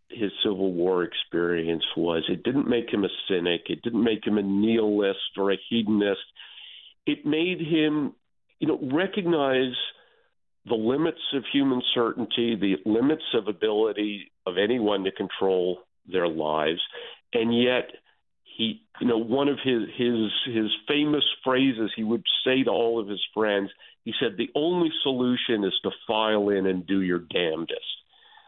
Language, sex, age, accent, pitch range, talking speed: English, male, 50-69, American, 95-135 Hz, 155 wpm